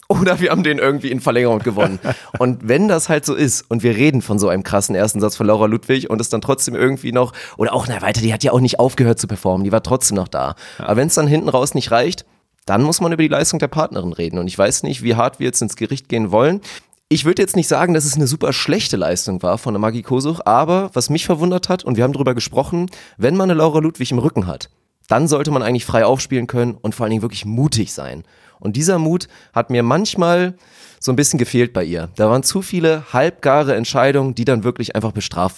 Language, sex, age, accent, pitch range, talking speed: German, male, 30-49, German, 115-155 Hz, 250 wpm